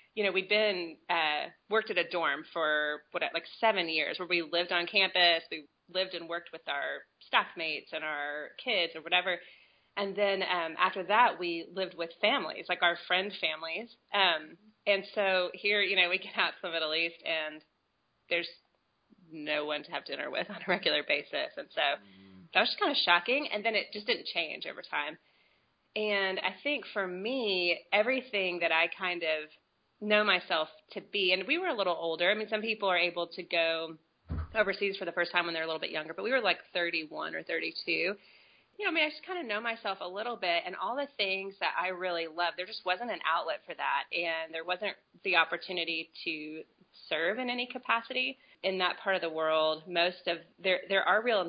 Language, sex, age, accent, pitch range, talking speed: English, female, 30-49, American, 165-205 Hz, 210 wpm